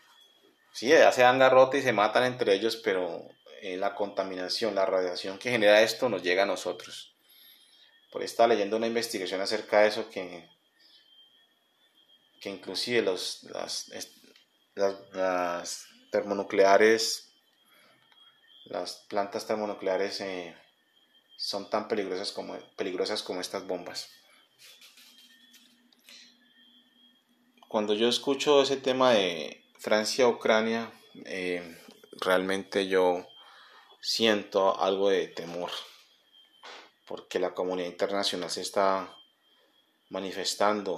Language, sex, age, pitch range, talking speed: Spanish, male, 30-49, 95-115 Hz, 110 wpm